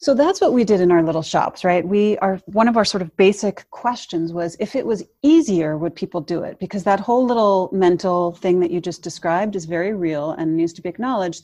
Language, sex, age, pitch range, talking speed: English, female, 30-49, 160-205 Hz, 240 wpm